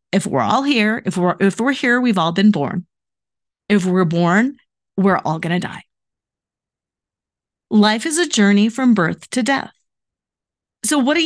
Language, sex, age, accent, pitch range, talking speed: English, female, 40-59, American, 185-275 Hz, 170 wpm